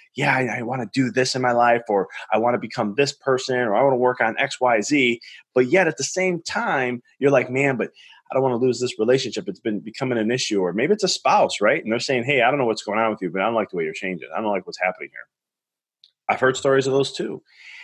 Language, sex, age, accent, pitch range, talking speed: English, male, 20-39, American, 115-145 Hz, 290 wpm